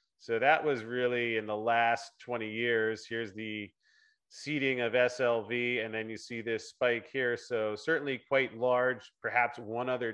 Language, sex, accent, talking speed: English, male, American, 165 wpm